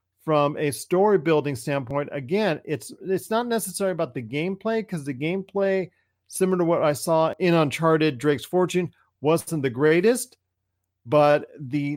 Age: 40-59